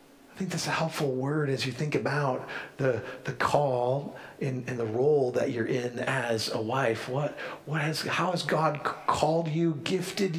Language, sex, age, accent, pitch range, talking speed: English, male, 40-59, American, 160-225 Hz, 190 wpm